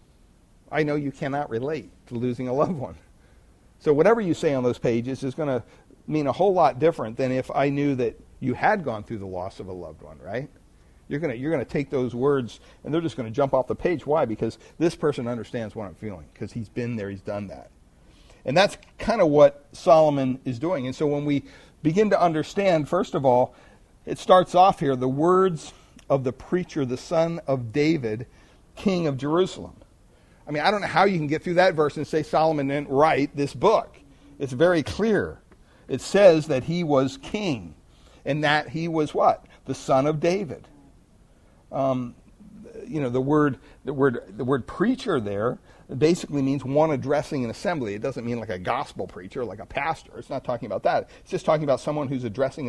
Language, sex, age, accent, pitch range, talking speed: English, male, 50-69, American, 125-155 Hz, 205 wpm